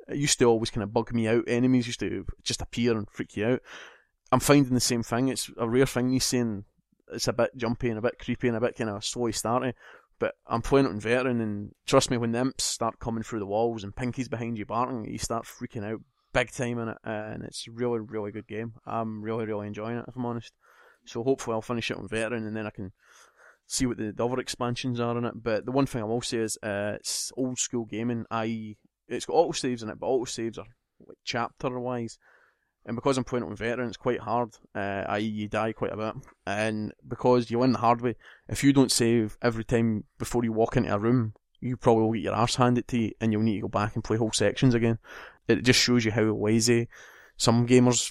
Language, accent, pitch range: English, British, 110-125 Hz